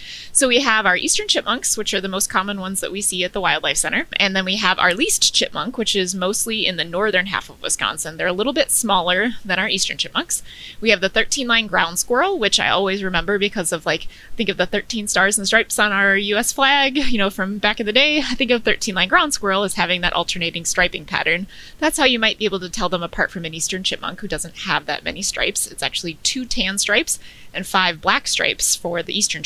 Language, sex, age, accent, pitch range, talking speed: English, female, 20-39, American, 185-245 Hz, 240 wpm